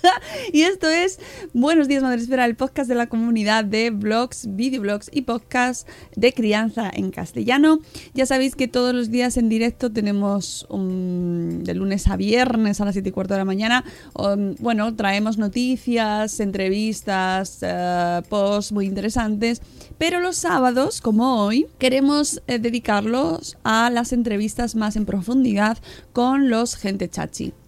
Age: 20-39